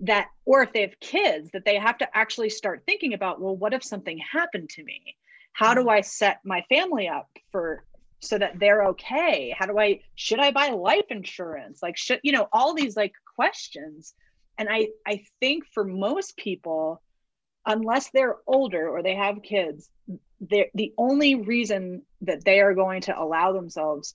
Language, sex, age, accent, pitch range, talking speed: English, female, 30-49, American, 180-225 Hz, 185 wpm